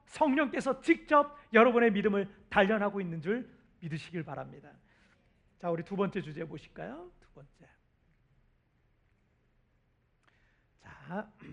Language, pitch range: Korean, 195-275 Hz